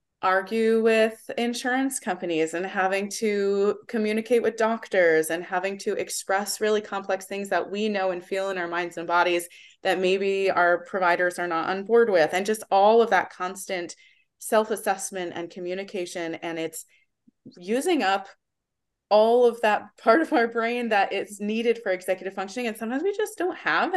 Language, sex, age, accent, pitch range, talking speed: English, female, 20-39, American, 175-225 Hz, 175 wpm